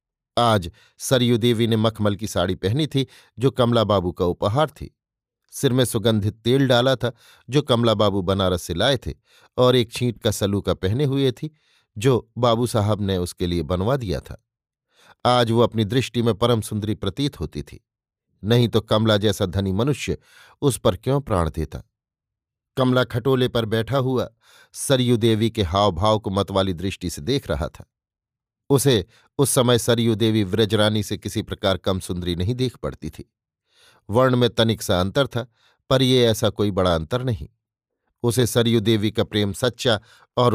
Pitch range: 100-125 Hz